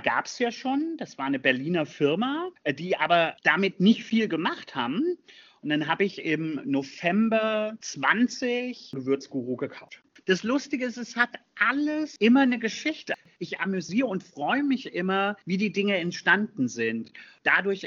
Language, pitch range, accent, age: German, 155-230 Hz, German, 40-59